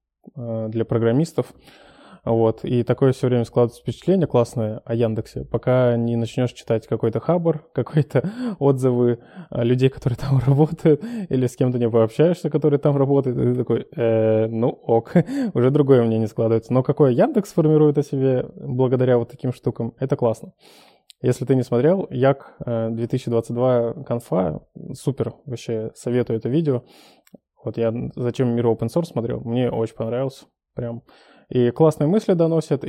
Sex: male